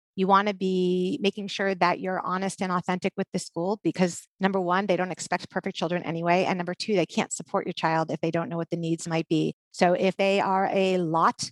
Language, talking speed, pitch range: English, 240 wpm, 175-200 Hz